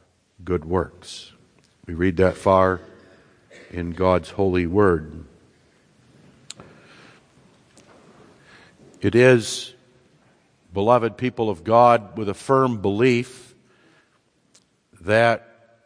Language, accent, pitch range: English, American, 100-120 Hz